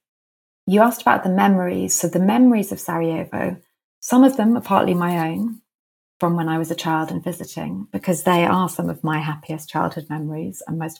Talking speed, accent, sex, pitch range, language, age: 195 wpm, British, female, 160-180 Hz, English, 30-49